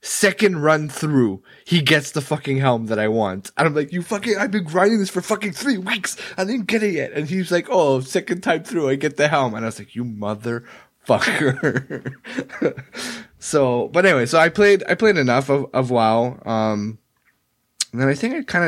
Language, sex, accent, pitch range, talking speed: English, male, American, 95-135 Hz, 210 wpm